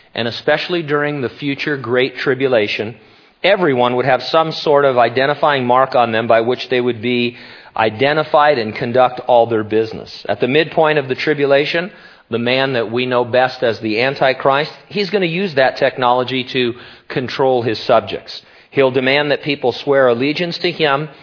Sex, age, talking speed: male, 40-59, 170 wpm